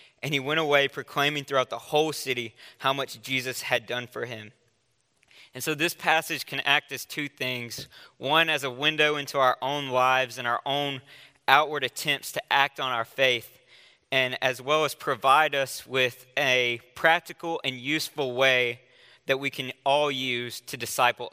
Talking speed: 175 wpm